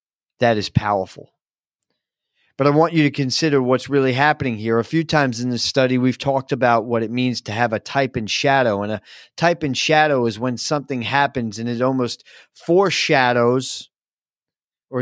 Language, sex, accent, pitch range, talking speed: English, male, American, 120-140 Hz, 180 wpm